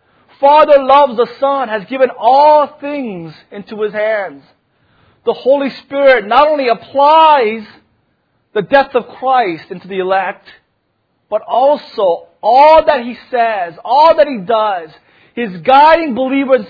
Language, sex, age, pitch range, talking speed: English, male, 30-49, 145-220 Hz, 135 wpm